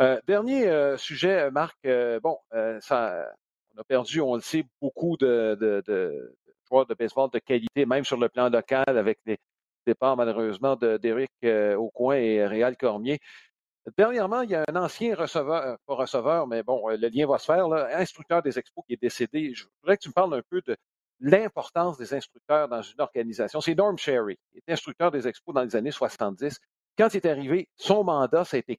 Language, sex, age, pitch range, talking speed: French, male, 50-69, 120-175 Hz, 215 wpm